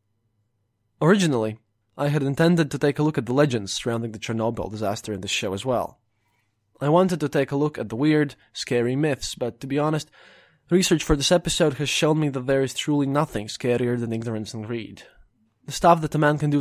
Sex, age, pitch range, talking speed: male, 20-39, 115-155 Hz, 215 wpm